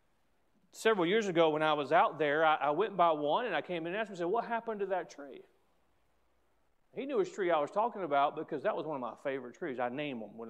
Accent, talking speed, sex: American, 270 wpm, male